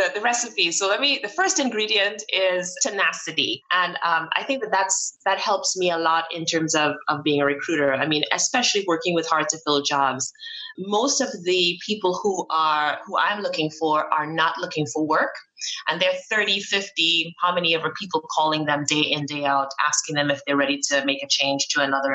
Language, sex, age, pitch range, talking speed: English, female, 20-39, 145-190 Hz, 215 wpm